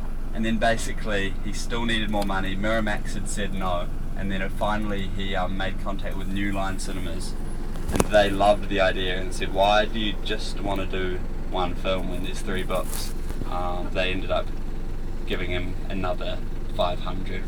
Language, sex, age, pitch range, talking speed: English, male, 20-39, 85-100 Hz, 175 wpm